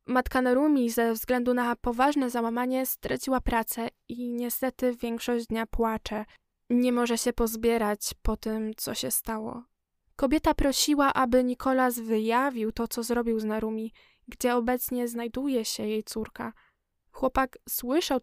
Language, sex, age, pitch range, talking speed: Polish, female, 10-29, 230-275 Hz, 135 wpm